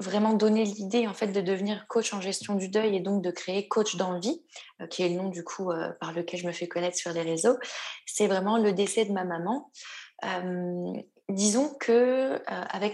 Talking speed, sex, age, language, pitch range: 220 wpm, female, 20-39, French, 175-215 Hz